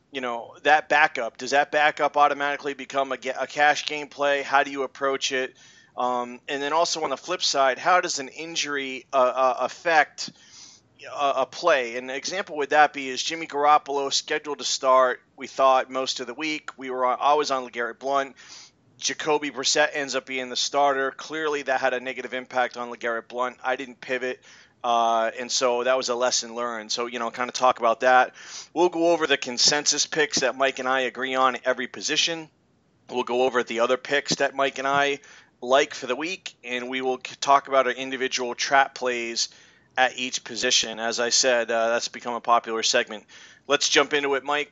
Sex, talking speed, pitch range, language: male, 200 wpm, 125-145 Hz, English